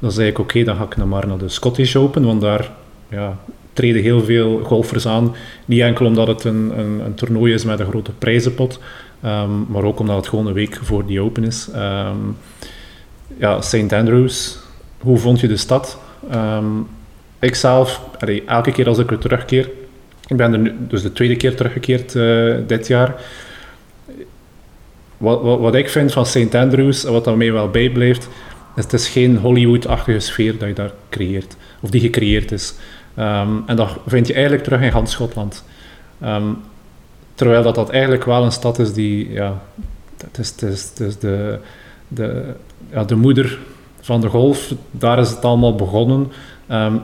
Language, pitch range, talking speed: Dutch, 105-125 Hz, 185 wpm